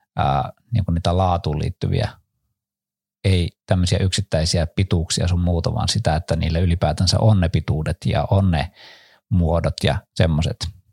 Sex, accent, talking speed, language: male, native, 130 wpm, Finnish